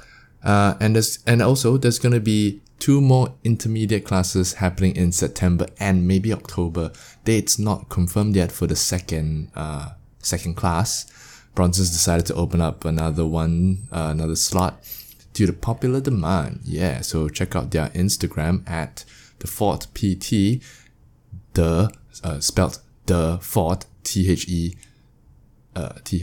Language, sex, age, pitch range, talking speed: English, male, 20-39, 85-110 Hz, 130 wpm